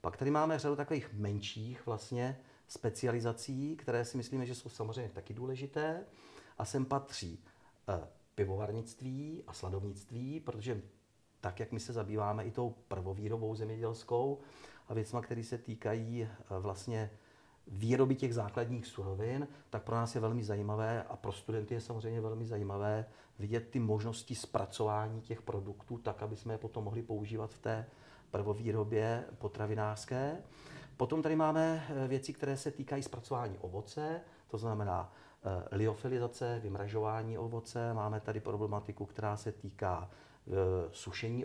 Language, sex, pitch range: Czech, male, 105-130 Hz